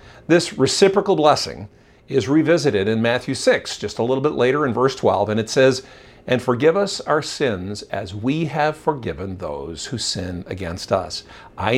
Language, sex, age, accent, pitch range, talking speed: English, male, 50-69, American, 100-145 Hz, 175 wpm